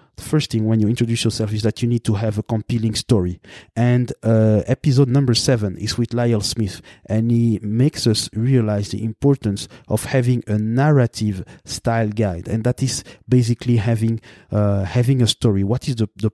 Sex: male